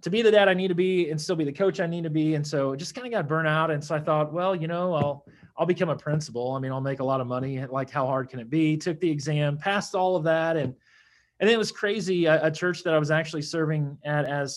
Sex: male